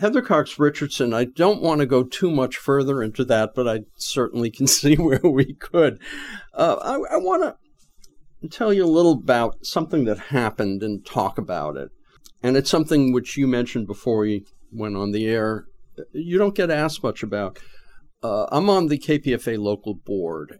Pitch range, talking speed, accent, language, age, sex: 110-155 Hz, 185 wpm, American, English, 50-69, male